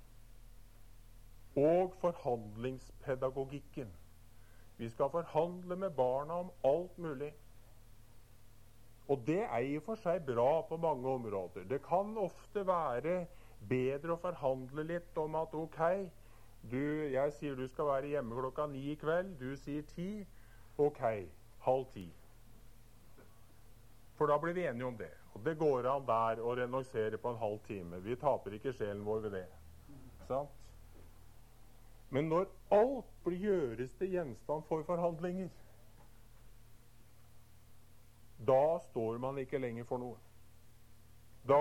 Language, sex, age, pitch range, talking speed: Danish, male, 50-69, 115-155 Hz, 130 wpm